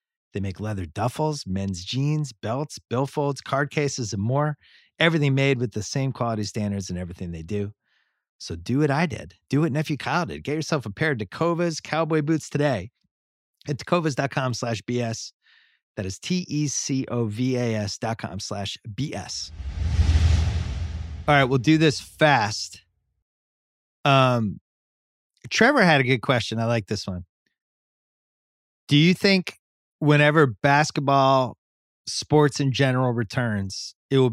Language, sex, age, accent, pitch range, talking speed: English, male, 30-49, American, 105-145 Hz, 145 wpm